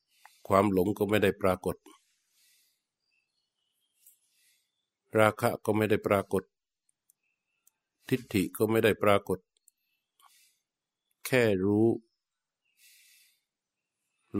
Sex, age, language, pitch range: male, 60-79, Thai, 95-110 Hz